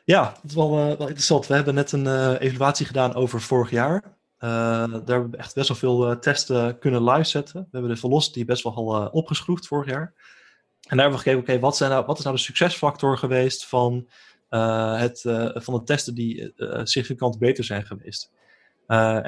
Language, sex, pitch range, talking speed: Dutch, male, 120-140 Hz, 220 wpm